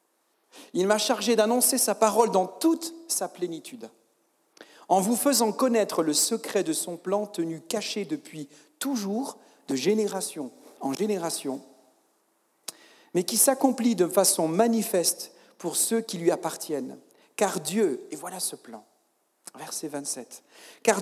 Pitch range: 180-245 Hz